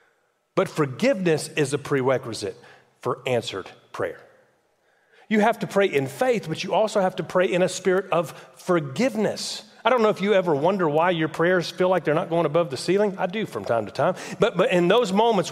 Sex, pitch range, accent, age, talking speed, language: male, 165-220 Hz, American, 40-59, 210 wpm, English